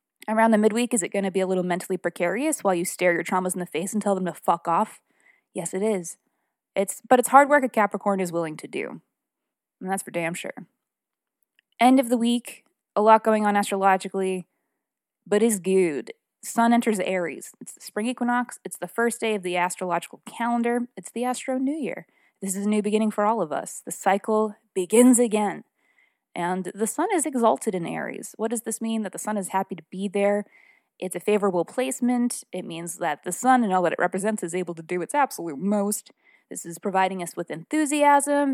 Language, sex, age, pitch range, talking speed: English, female, 20-39, 180-225 Hz, 210 wpm